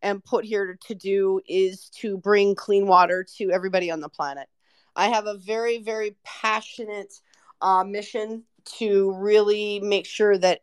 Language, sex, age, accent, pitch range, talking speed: English, female, 40-59, American, 185-215 Hz, 160 wpm